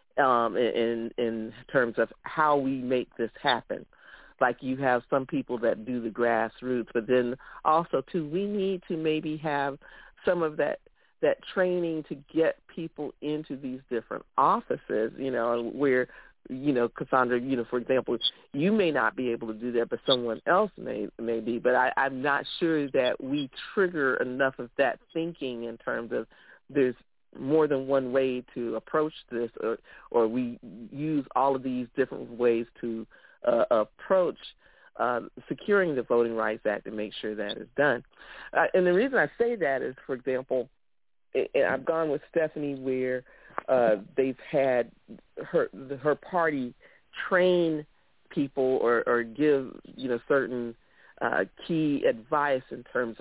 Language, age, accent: English, 50-69, American